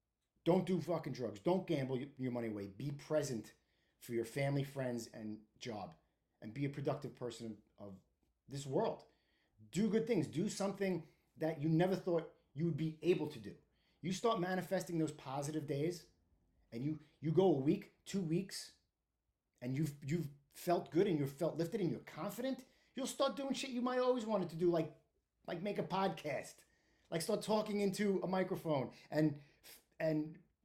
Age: 30-49